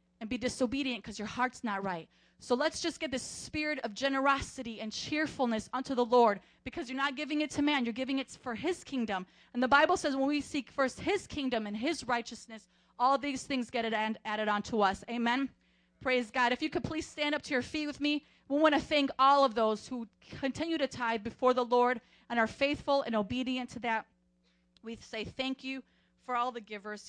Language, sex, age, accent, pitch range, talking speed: English, female, 30-49, American, 215-275 Hz, 215 wpm